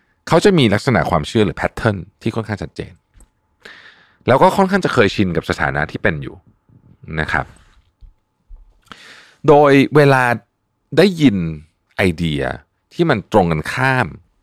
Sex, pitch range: male, 80-115 Hz